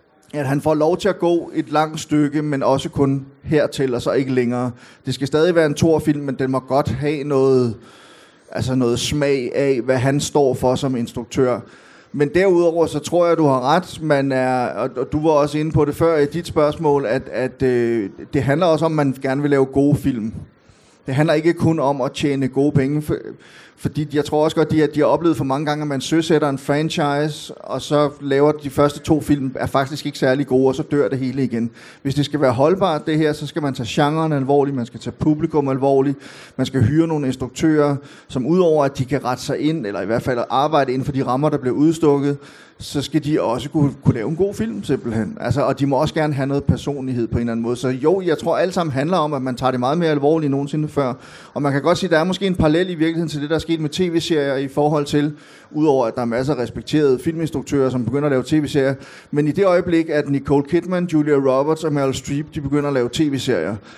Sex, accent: male, native